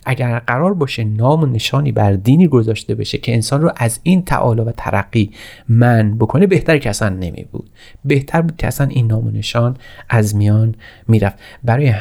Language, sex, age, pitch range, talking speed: Persian, male, 30-49, 110-135 Hz, 165 wpm